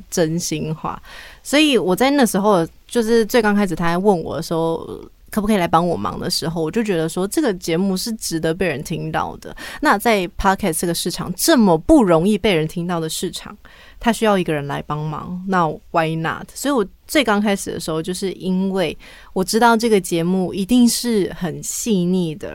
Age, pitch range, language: 20-39, 165-215 Hz, Chinese